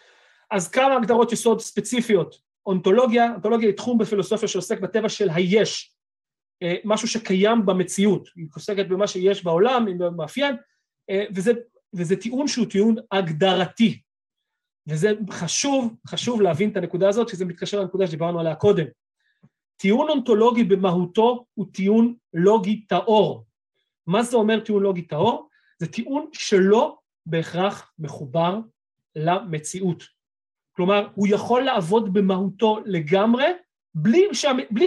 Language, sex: Hebrew, male